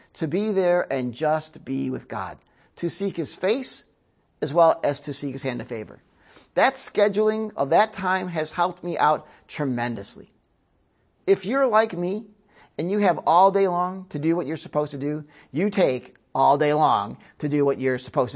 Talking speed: 190 wpm